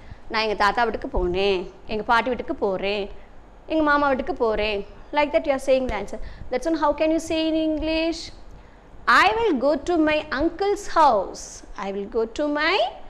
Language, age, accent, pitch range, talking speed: Tamil, 20-39, native, 225-315 Hz, 185 wpm